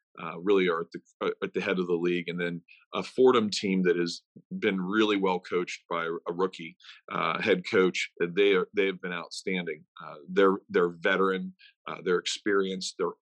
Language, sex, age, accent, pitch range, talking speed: English, male, 40-59, American, 85-100 Hz, 185 wpm